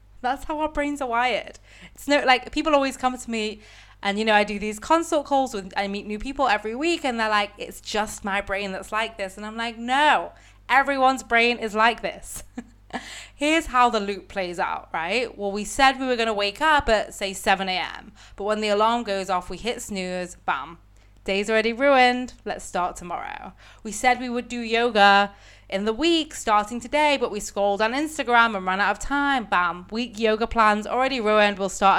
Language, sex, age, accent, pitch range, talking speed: English, female, 20-39, British, 200-255 Hz, 210 wpm